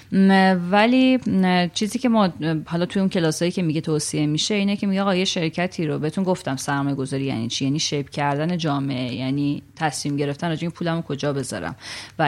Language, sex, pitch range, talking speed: Persian, female, 150-190 Hz, 185 wpm